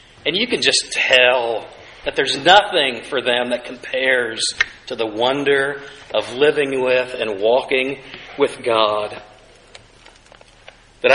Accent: American